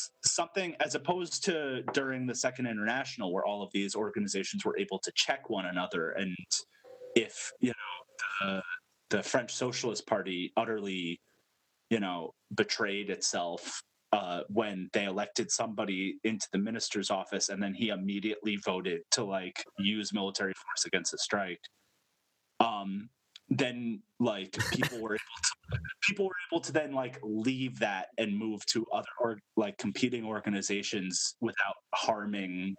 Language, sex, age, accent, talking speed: English, male, 30-49, American, 140 wpm